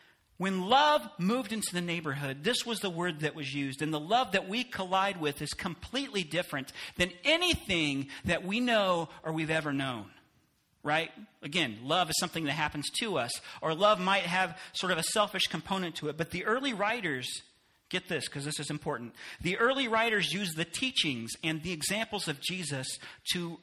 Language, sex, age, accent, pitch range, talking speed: English, male, 40-59, American, 140-190 Hz, 190 wpm